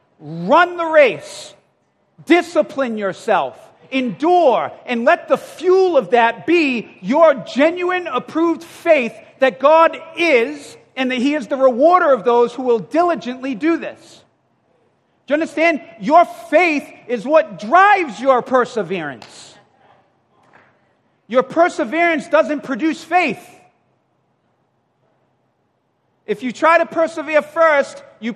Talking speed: 115 wpm